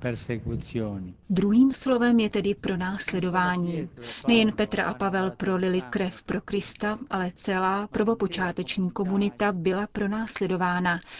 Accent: native